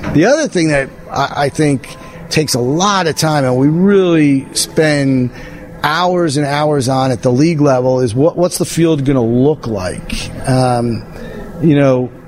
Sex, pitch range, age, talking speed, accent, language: male, 135-170 Hz, 40-59, 165 wpm, American, English